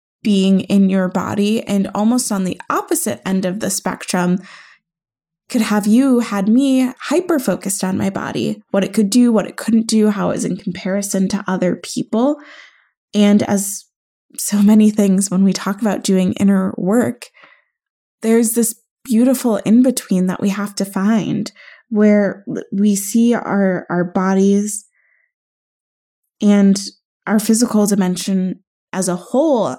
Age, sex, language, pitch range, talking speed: 20-39, female, English, 195-235 Hz, 145 wpm